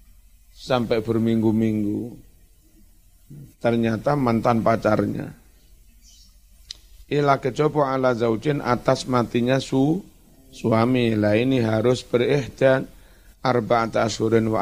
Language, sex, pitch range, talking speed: Indonesian, male, 105-125 Hz, 80 wpm